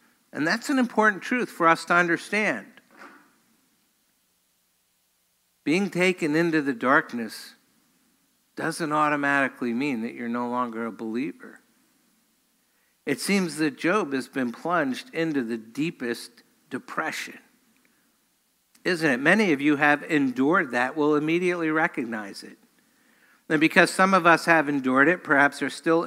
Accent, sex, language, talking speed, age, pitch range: American, male, English, 130 wpm, 50-69, 150-220 Hz